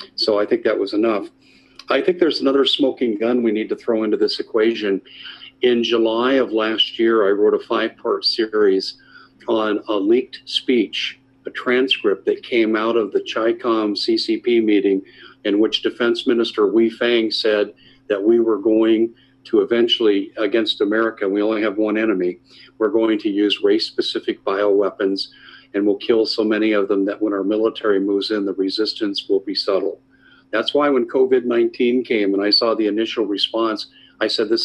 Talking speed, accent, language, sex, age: 175 wpm, American, English, male, 50-69